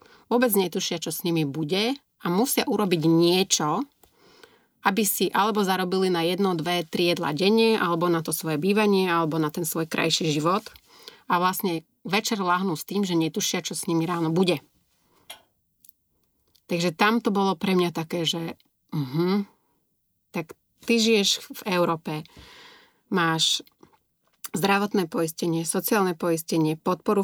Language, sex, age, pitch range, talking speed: Slovak, female, 30-49, 170-210 Hz, 140 wpm